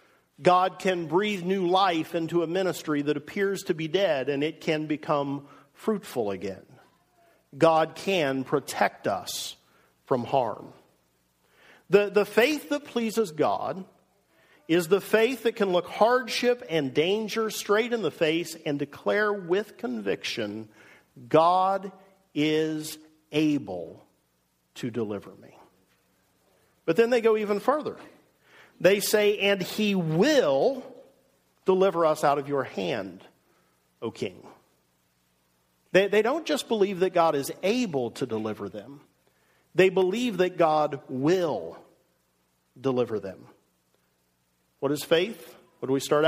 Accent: American